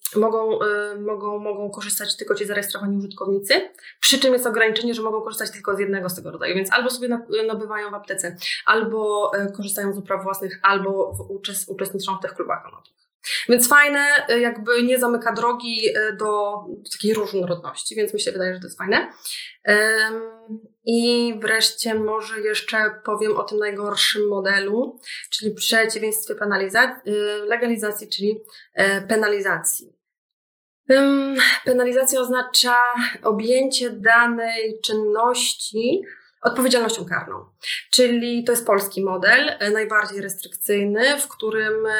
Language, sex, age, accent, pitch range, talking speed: Polish, female, 20-39, native, 205-235 Hz, 125 wpm